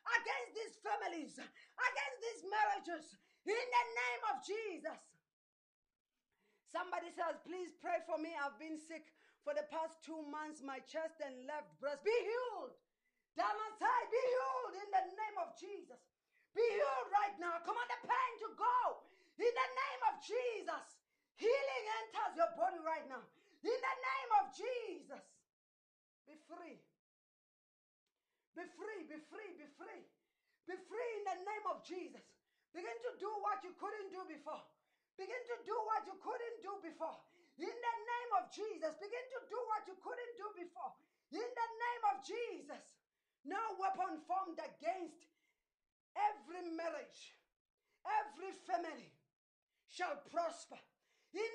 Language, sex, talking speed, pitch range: English, female, 145 wpm, 325-435 Hz